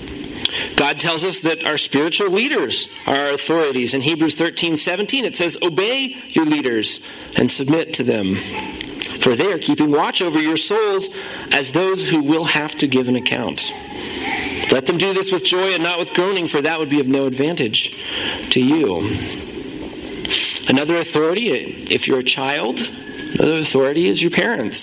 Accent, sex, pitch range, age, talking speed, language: American, male, 140-200 Hz, 40-59, 170 wpm, English